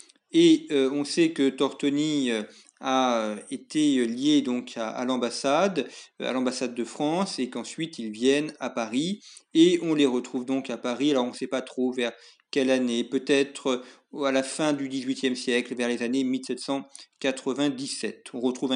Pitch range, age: 125-160 Hz, 40-59